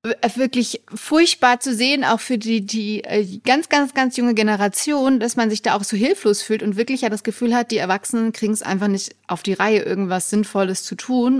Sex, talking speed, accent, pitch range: female, 210 wpm, German, 185-225 Hz